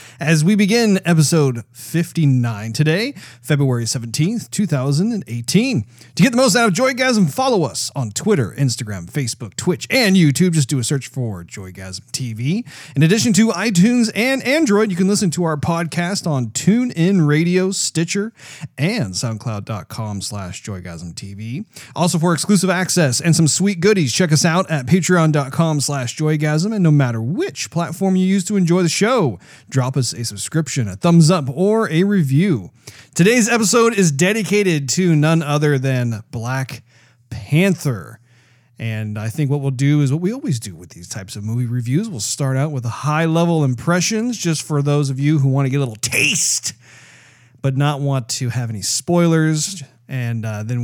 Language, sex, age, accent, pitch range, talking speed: English, male, 30-49, American, 120-175 Hz, 170 wpm